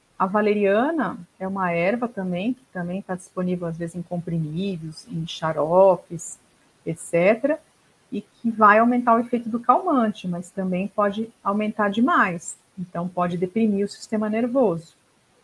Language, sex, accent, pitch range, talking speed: Portuguese, female, Brazilian, 175-210 Hz, 140 wpm